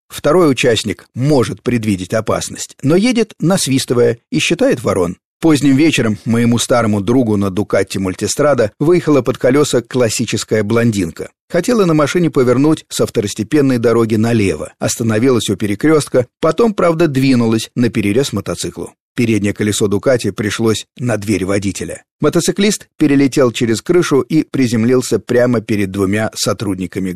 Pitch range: 110-145 Hz